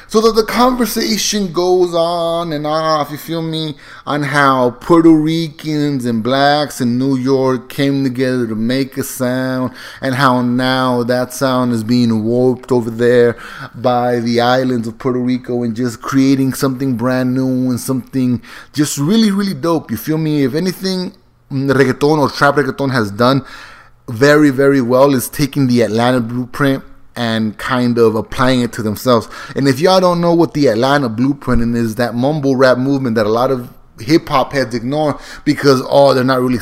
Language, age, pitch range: English, 30-49, 125-160 Hz